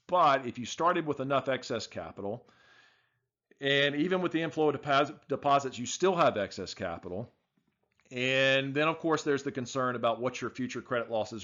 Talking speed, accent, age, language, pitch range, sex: 175 wpm, American, 40-59, English, 115-150 Hz, male